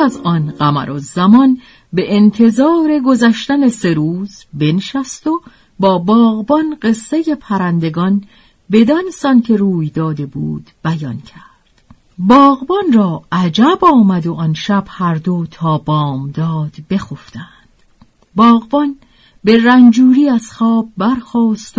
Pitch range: 170-240 Hz